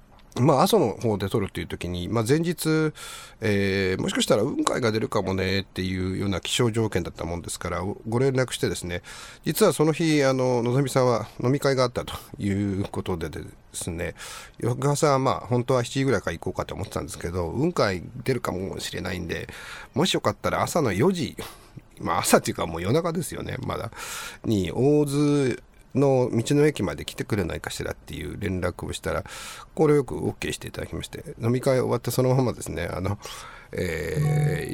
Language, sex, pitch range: Japanese, male, 95-130 Hz